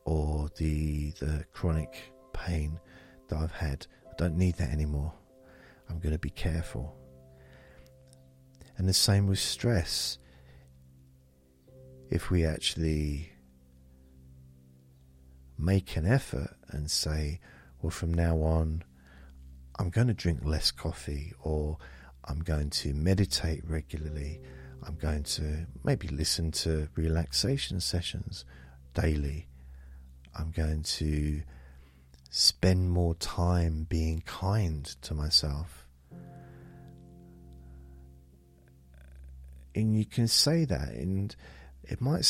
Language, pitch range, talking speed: English, 65-85 Hz, 105 wpm